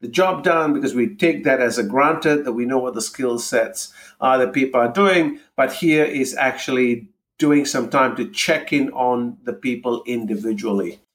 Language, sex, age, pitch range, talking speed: English, male, 50-69, 125-165 Hz, 195 wpm